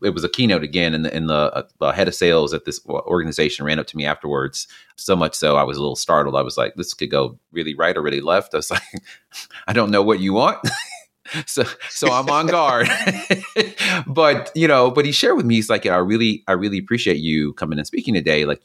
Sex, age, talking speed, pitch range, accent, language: male, 30-49, 245 wpm, 80-105 Hz, American, English